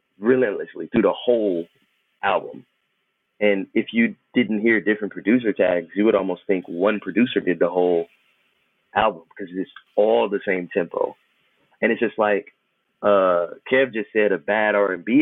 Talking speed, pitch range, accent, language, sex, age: 160 wpm, 95-120 Hz, American, English, male, 30-49